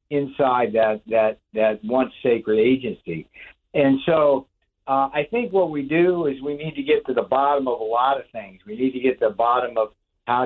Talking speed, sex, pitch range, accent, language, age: 210 wpm, male, 115-140 Hz, American, English, 50-69